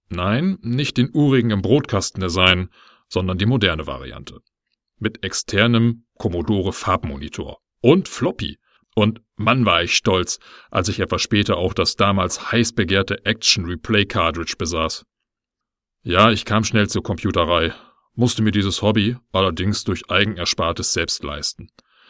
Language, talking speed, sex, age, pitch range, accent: German, 130 wpm, male, 40-59, 90-115 Hz, German